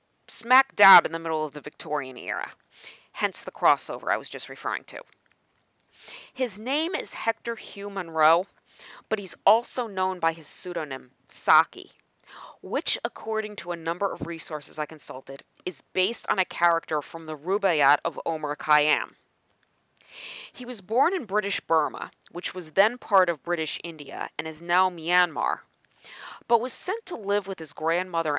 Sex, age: female, 40-59